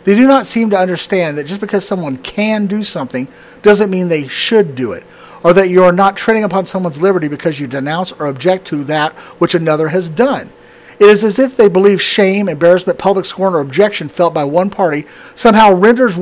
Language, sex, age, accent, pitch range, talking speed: English, male, 50-69, American, 170-210 Hz, 210 wpm